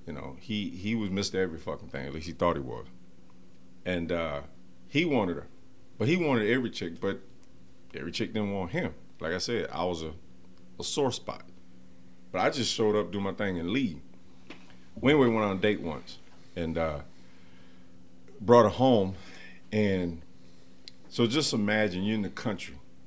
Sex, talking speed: male, 180 wpm